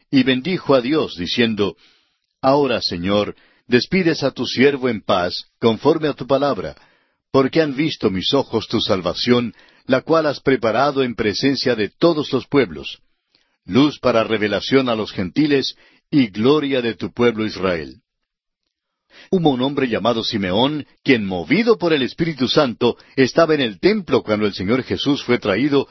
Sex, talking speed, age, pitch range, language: male, 155 wpm, 60-79, 115-155 Hz, Spanish